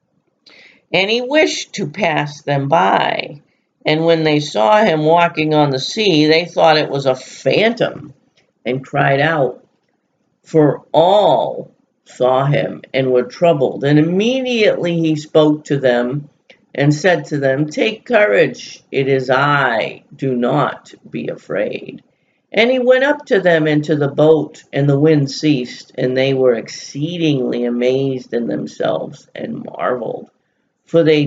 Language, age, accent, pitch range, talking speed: English, 50-69, American, 130-165 Hz, 145 wpm